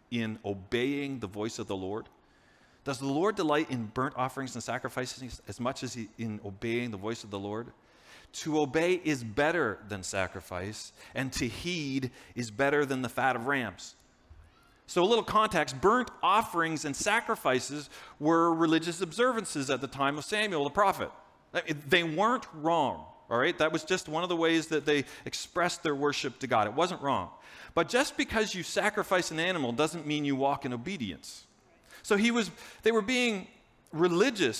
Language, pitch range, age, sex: English, 130-195 Hz, 40-59, male